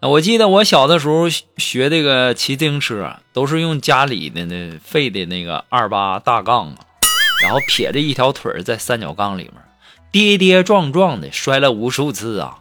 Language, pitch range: Chinese, 125-195 Hz